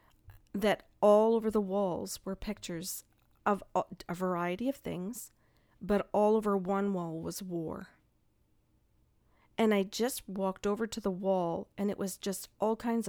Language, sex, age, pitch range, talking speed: English, female, 40-59, 180-220 Hz, 150 wpm